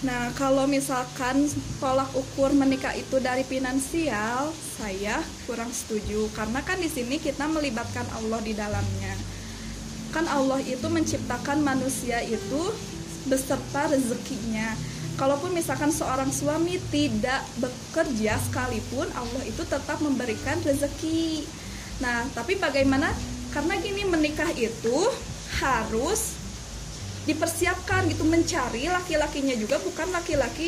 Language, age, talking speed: Indonesian, 20-39, 110 wpm